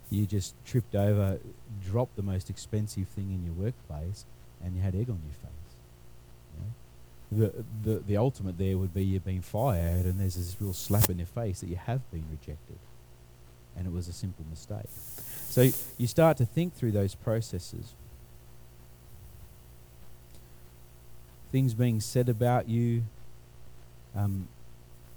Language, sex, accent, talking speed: English, male, Australian, 150 wpm